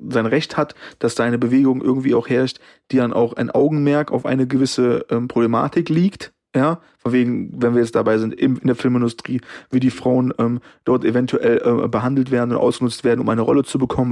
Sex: male